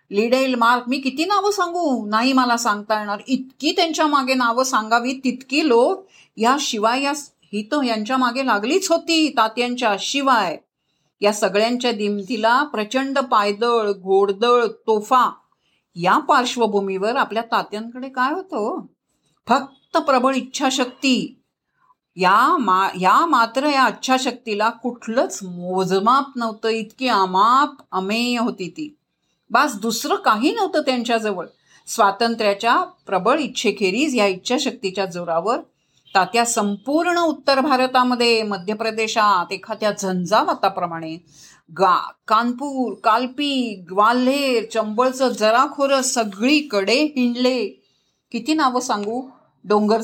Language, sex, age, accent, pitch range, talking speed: Marathi, female, 50-69, native, 210-270 Hz, 105 wpm